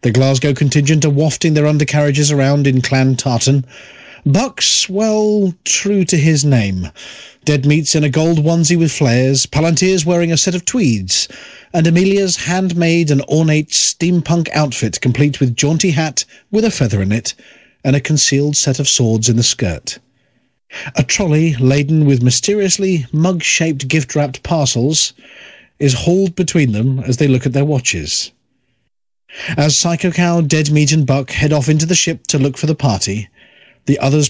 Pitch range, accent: 130-165 Hz, British